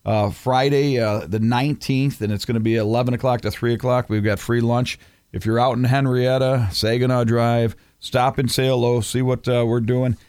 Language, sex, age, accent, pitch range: Japanese, male, 40-59, American, 115-135 Hz